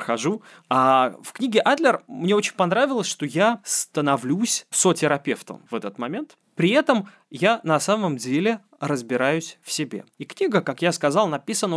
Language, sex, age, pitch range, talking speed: Russian, male, 20-39, 130-190 Hz, 150 wpm